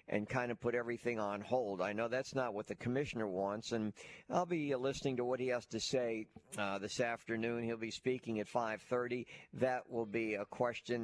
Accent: American